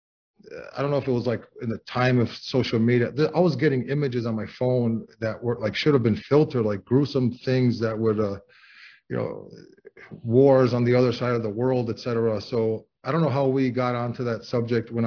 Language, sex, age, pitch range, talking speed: English, male, 30-49, 115-130 Hz, 220 wpm